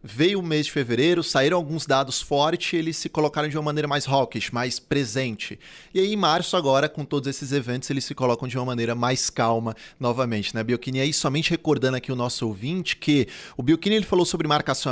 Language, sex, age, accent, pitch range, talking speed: Portuguese, male, 20-39, Brazilian, 125-165 Hz, 220 wpm